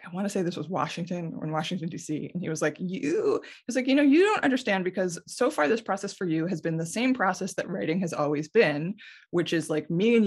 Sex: female